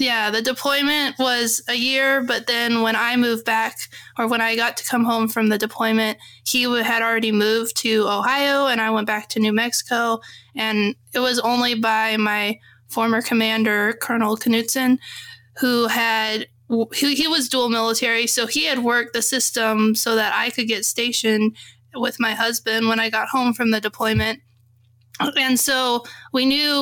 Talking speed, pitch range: 175 wpm, 220-255 Hz